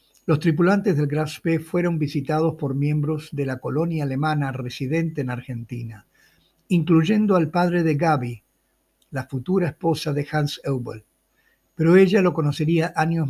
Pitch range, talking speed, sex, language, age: 140-170 Hz, 145 wpm, male, Spanish, 60-79